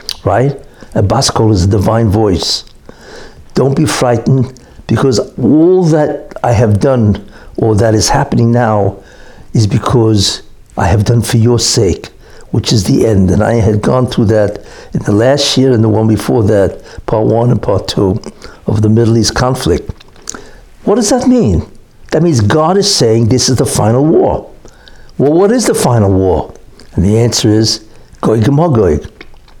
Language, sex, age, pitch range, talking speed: English, male, 60-79, 110-140 Hz, 165 wpm